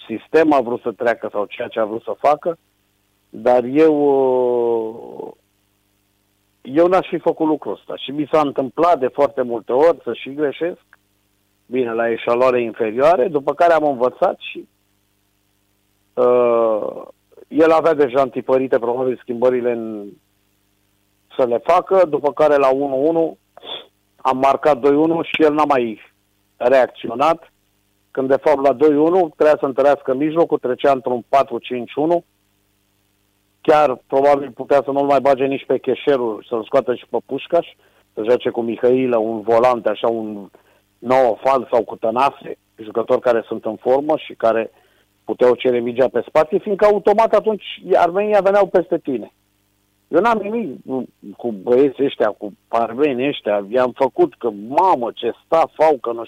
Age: 50-69